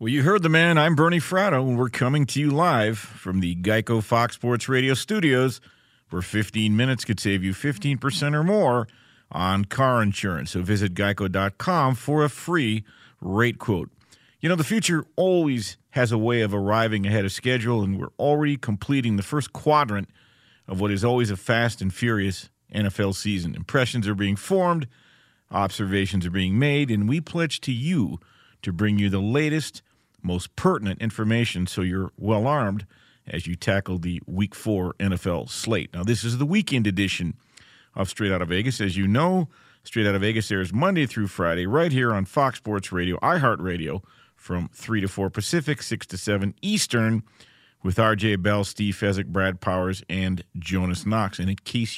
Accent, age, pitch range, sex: American, 50-69, 95-130 Hz, male